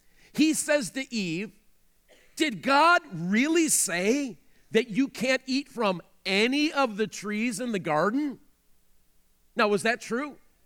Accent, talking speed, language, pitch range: American, 135 wpm, English, 195-275 Hz